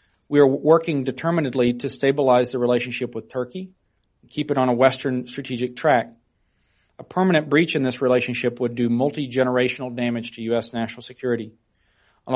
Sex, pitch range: male, 120-140 Hz